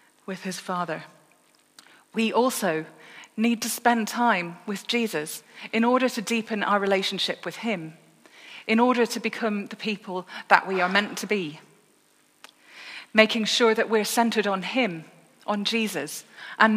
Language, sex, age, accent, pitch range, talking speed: English, female, 40-59, British, 195-240 Hz, 145 wpm